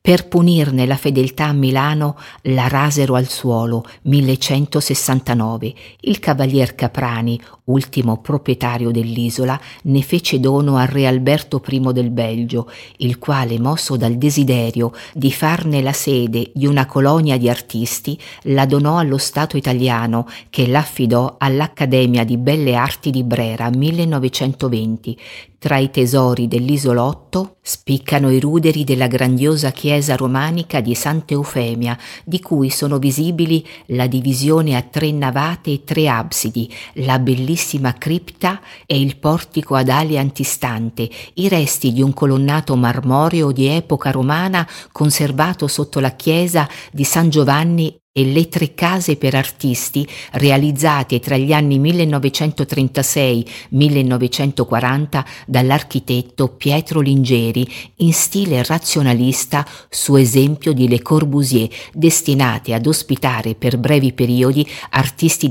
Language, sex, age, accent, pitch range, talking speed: Italian, female, 50-69, native, 125-150 Hz, 125 wpm